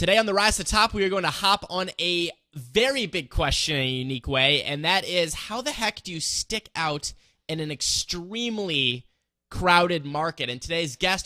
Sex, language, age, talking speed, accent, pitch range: male, English, 20-39, 210 wpm, American, 145-195 Hz